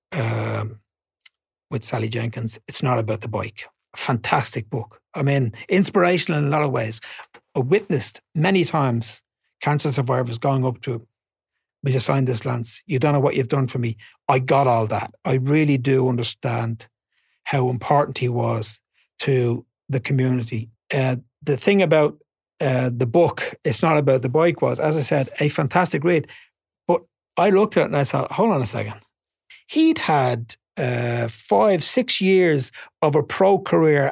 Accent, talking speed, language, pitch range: Irish, 170 wpm, English, 120-180 Hz